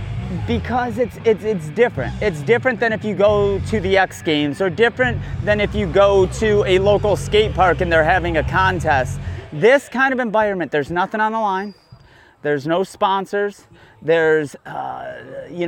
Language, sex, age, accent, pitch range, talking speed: English, male, 30-49, American, 155-240 Hz, 175 wpm